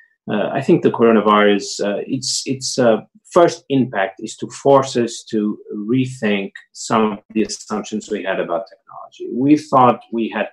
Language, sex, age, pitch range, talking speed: Hindi, male, 30-49, 105-135 Hz, 160 wpm